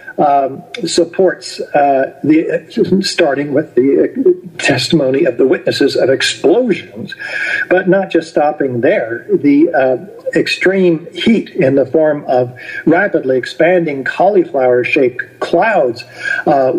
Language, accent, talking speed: English, American, 115 wpm